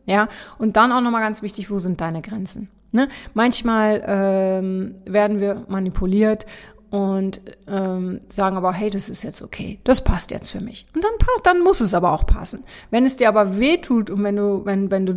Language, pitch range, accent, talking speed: German, 190-210 Hz, German, 200 wpm